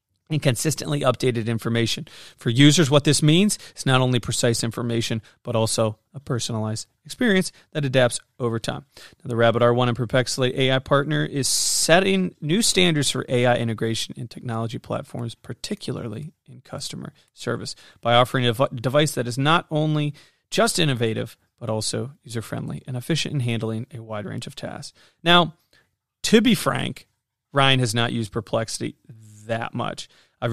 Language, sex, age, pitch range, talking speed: English, male, 30-49, 115-140 Hz, 155 wpm